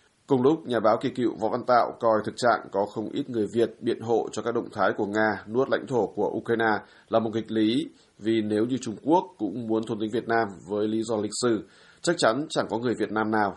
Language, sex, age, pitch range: Vietnamese, male, 20-39, 105-115 Hz